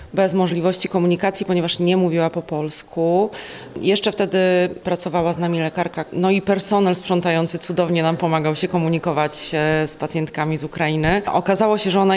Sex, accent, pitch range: female, native, 160-190 Hz